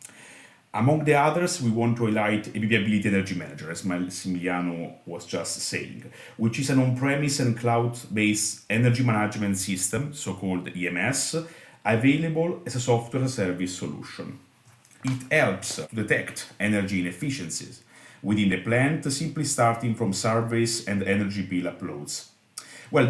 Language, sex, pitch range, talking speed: English, male, 100-125 Hz, 130 wpm